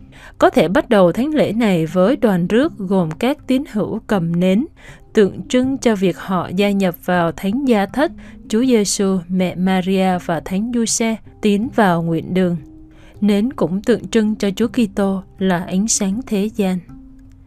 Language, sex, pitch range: Vietnamese, female, 185-230 Hz